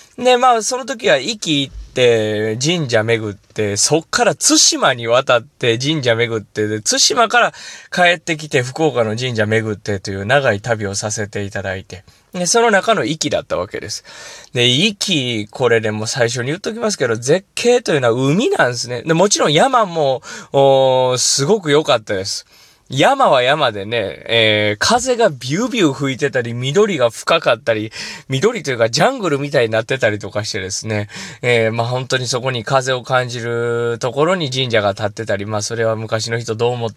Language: Japanese